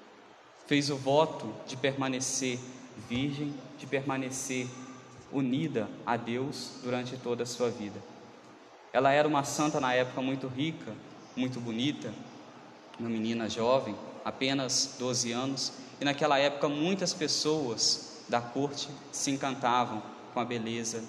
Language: Portuguese